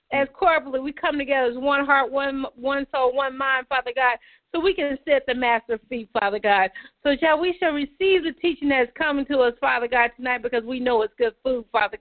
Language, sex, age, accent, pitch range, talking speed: English, female, 40-59, American, 240-285 Hz, 235 wpm